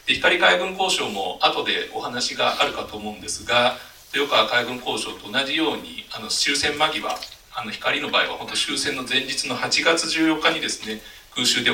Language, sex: Japanese, male